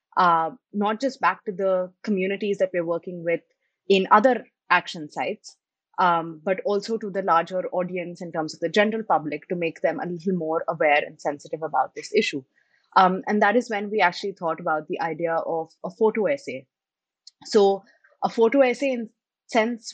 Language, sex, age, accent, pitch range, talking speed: English, female, 20-39, Indian, 170-210 Hz, 185 wpm